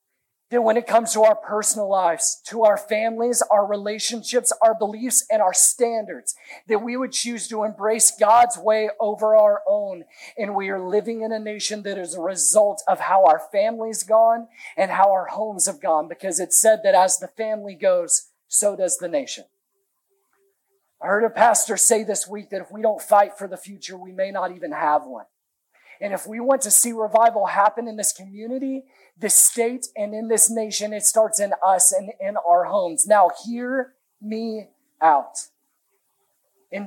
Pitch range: 205-255 Hz